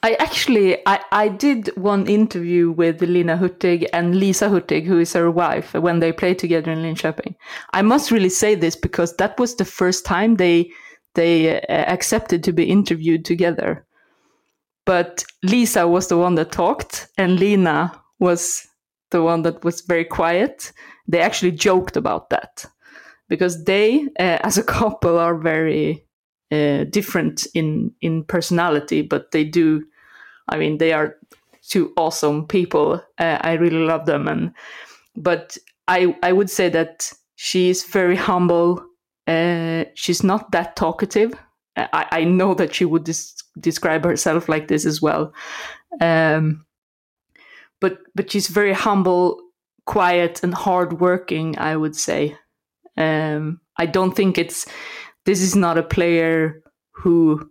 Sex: female